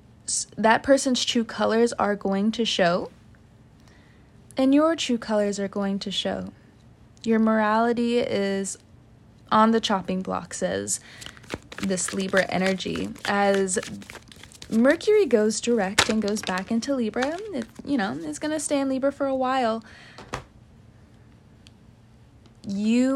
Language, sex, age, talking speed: English, female, 20-39, 130 wpm